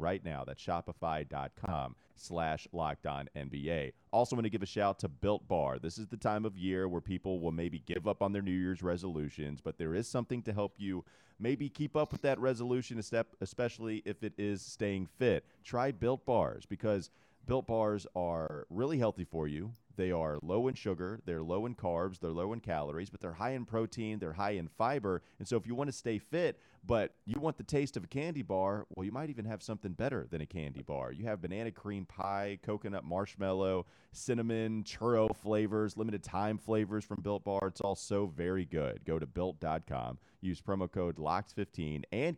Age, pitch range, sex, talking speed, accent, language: 30-49, 90-115 Hz, male, 200 wpm, American, English